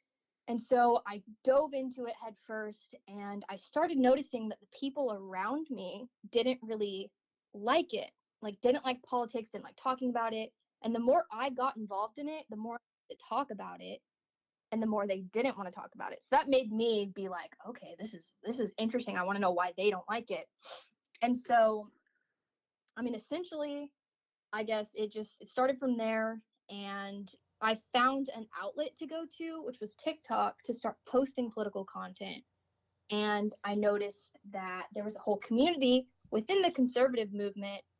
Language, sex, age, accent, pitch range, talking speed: English, female, 20-39, American, 205-260 Hz, 185 wpm